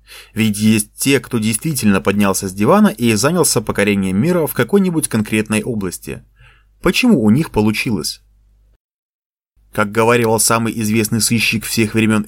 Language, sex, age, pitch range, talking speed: Russian, male, 30-49, 105-145 Hz, 130 wpm